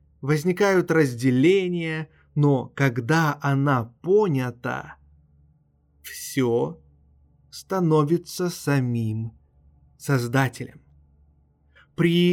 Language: Russian